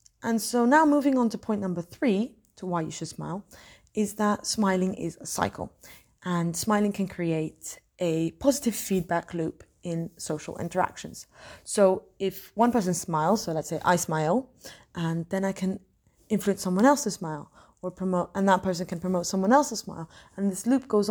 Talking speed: 180 wpm